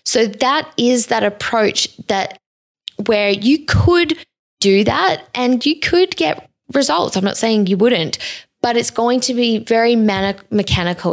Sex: female